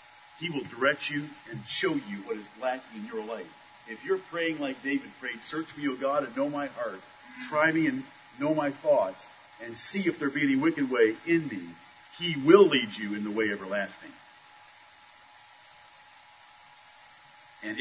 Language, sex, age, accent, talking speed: English, male, 50-69, American, 175 wpm